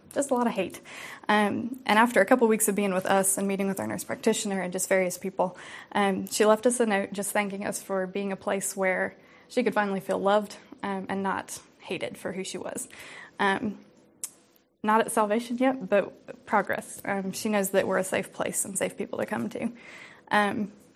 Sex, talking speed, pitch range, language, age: female, 215 wpm, 195-220 Hz, English, 20-39